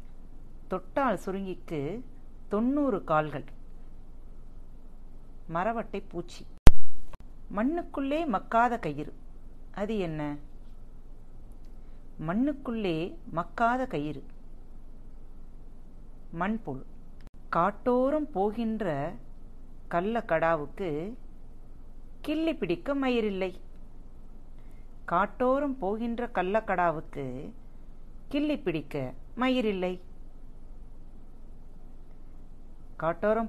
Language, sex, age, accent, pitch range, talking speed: Tamil, female, 40-59, native, 150-230 Hz, 40 wpm